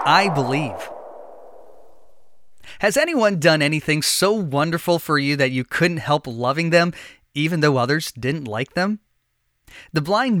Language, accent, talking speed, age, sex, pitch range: English, American, 140 wpm, 20-39, male, 140-180 Hz